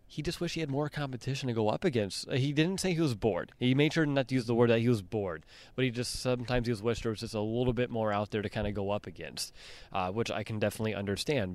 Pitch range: 105-125 Hz